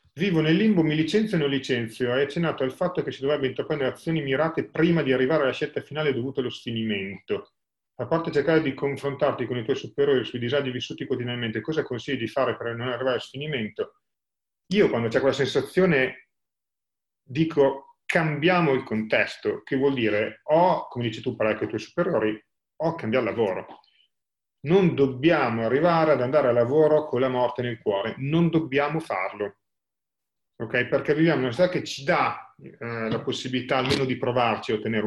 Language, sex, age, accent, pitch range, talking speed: Italian, male, 40-59, native, 110-155 Hz, 175 wpm